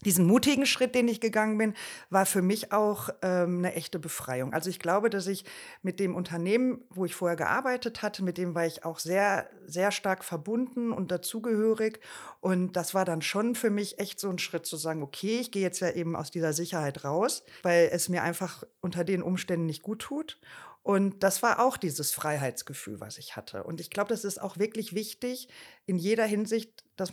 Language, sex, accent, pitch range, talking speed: German, female, German, 180-225 Hz, 205 wpm